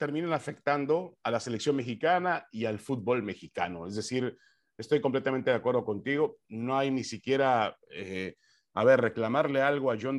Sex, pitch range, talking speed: male, 115-150 Hz, 165 wpm